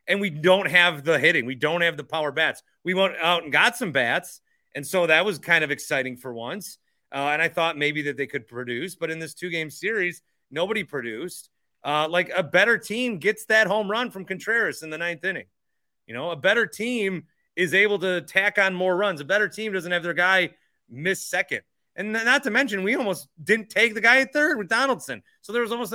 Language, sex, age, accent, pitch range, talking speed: English, male, 30-49, American, 160-215 Hz, 225 wpm